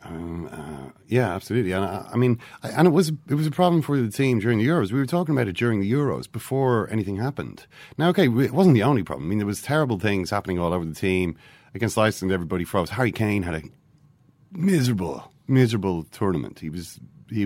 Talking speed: 225 wpm